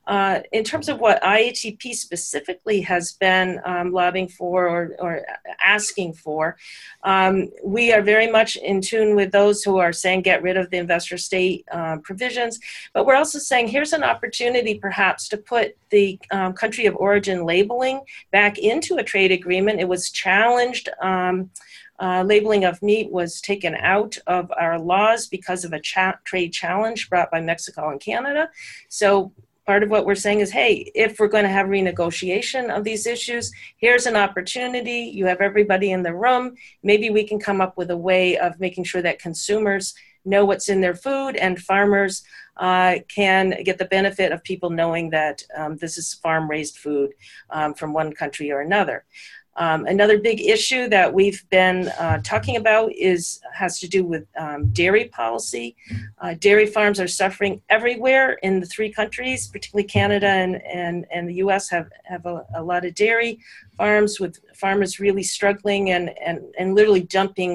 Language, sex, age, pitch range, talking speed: English, female, 40-59, 180-210 Hz, 175 wpm